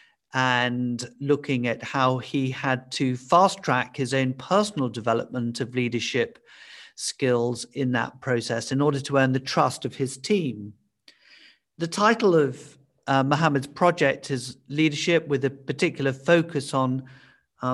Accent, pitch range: British, 130-150 Hz